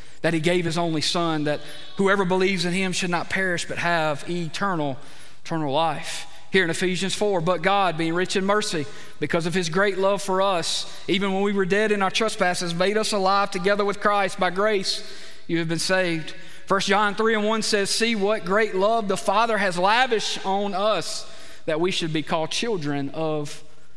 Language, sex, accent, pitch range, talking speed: English, male, American, 150-195 Hz, 200 wpm